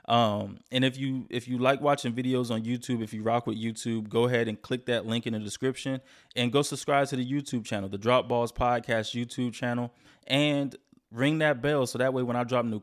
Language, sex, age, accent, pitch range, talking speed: English, male, 20-39, American, 115-140 Hz, 230 wpm